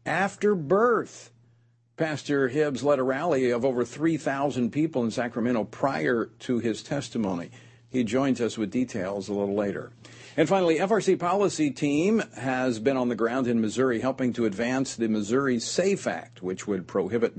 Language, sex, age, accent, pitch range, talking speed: English, male, 50-69, American, 120-160 Hz, 160 wpm